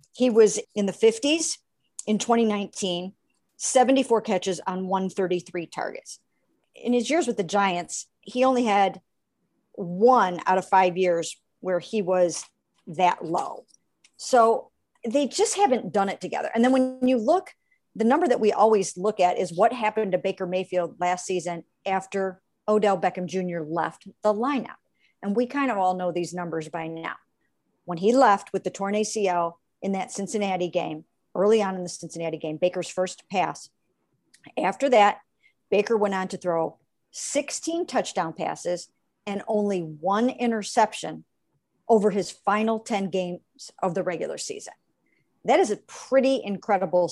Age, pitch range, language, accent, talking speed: 50-69, 180-240 Hz, English, American, 155 wpm